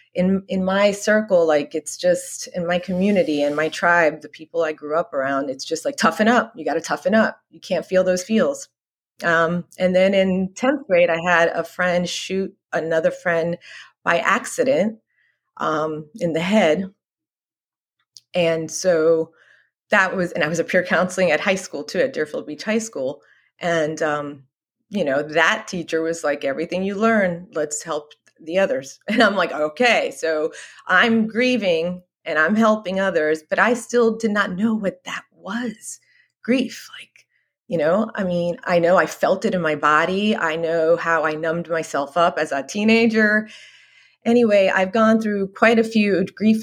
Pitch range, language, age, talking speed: 160-210 Hz, English, 30-49, 180 wpm